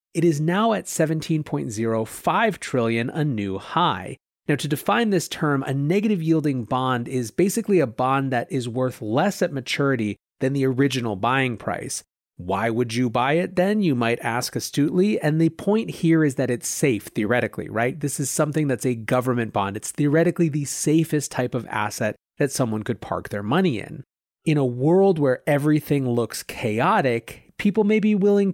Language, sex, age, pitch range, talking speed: English, male, 30-49, 120-165 Hz, 175 wpm